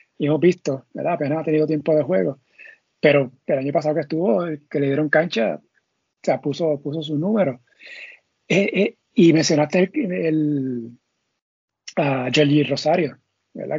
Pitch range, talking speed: 145-165 Hz, 150 wpm